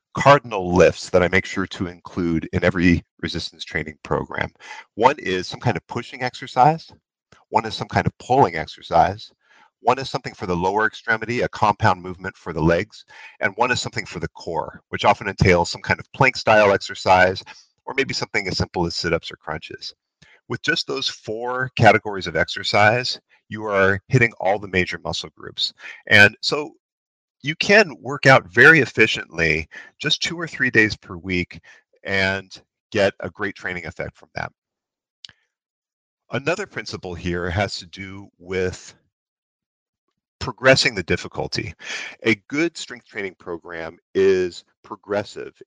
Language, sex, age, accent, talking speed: English, male, 50-69, American, 160 wpm